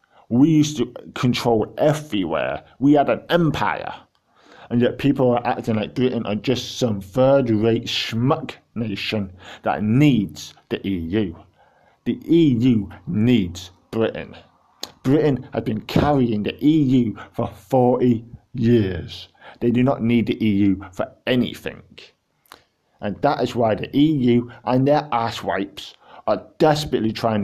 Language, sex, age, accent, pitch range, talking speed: English, male, 50-69, British, 105-130 Hz, 130 wpm